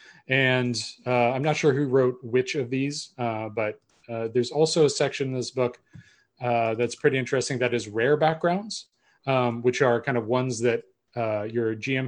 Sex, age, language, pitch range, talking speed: male, 30-49, English, 120-145 Hz, 190 wpm